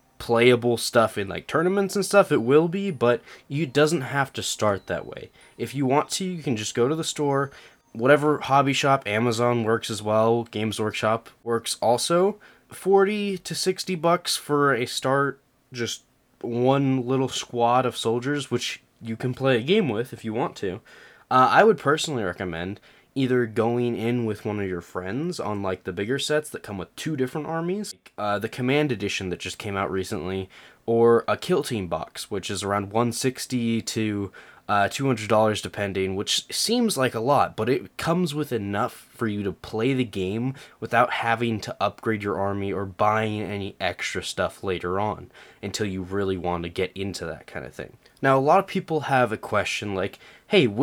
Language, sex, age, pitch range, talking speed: English, male, 20-39, 105-140 Hz, 190 wpm